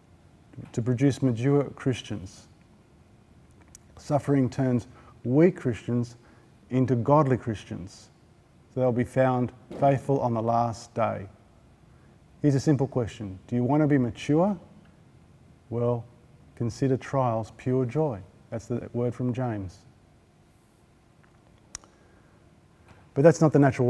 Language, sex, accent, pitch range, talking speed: English, male, Australian, 110-135 Hz, 115 wpm